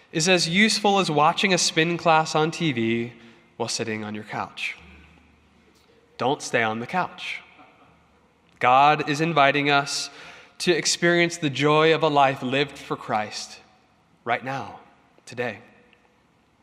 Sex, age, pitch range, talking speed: male, 20-39, 135-170 Hz, 135 wpm